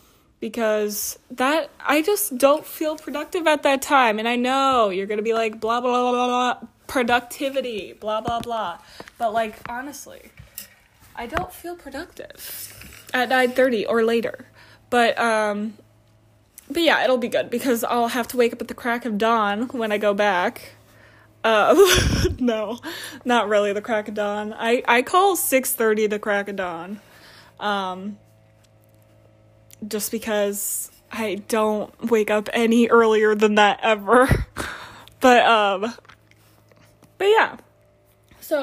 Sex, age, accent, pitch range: female, 20-39, American, 205-265 Hz